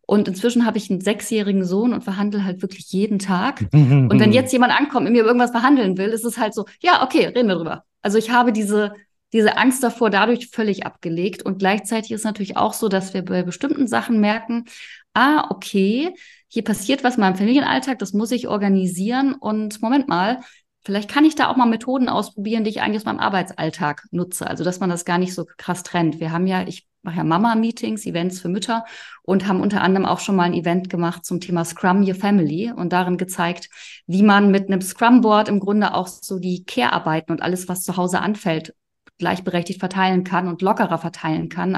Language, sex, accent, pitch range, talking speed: German, female, German, 180-225 Hz, 210 wpm